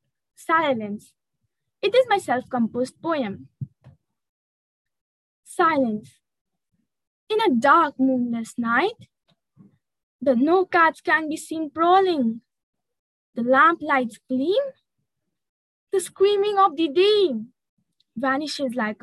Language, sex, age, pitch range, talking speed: Hindi, female, 20-39, 235-345 Hz, 95 wpm